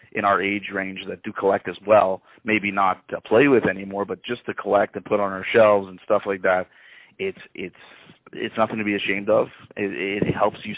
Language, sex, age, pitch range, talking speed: English, male, 30-49, 95-110 Hz, 225 wpm